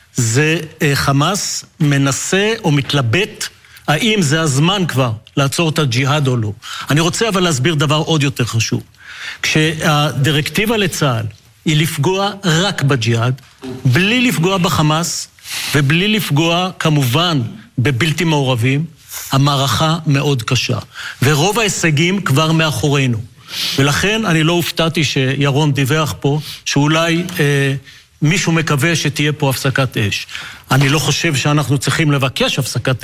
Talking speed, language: 120 wpm, Hebrew